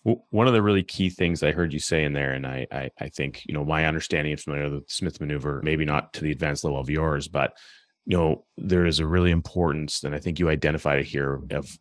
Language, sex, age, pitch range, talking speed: English, male, 30-49, 75-90 Hz, 250 wpm